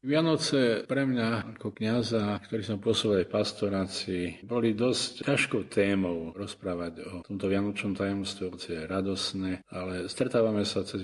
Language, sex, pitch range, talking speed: Slovak, male, 90-105 Hz, 140 wpm